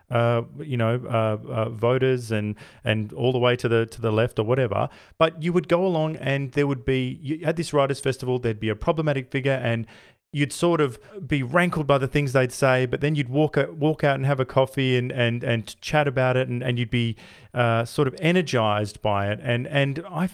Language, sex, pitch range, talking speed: English, male, 110-140 Hz, 225 wpm